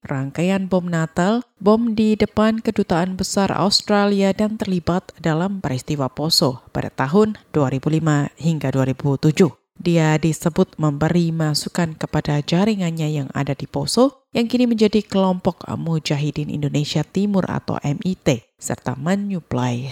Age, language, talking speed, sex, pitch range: 20-39, Indonesian, 120 wpm, female, 155-215 Hz